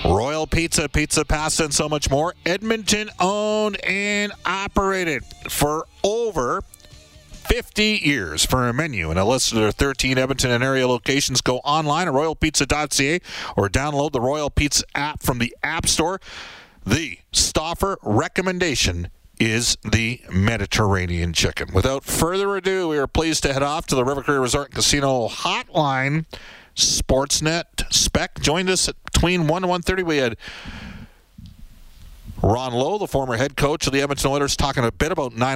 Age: 40-59